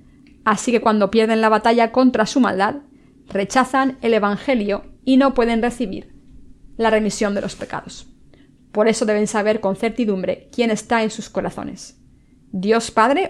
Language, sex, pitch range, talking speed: Spanish, female, 205-235 Hz, 155 wpm